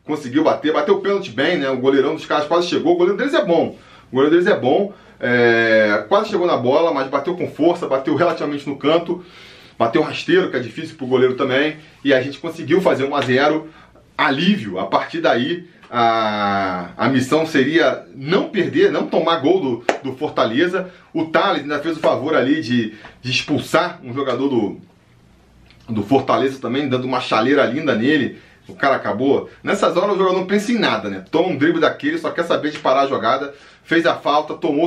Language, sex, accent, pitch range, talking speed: Portuguese, male, Brazilian, 130-170 Hz, 200 wpm